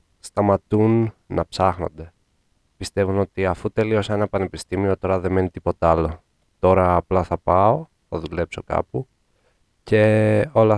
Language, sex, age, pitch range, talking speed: English, male, 20-39, 85-110 Hz, 130 wpm